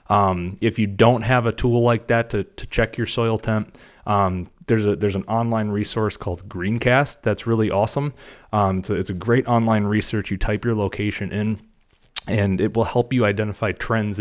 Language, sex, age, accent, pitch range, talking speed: English, male, 30-49, American, 95-110 Hz, 200 wpm